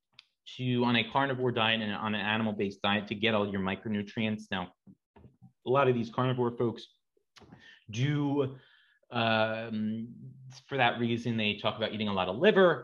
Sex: male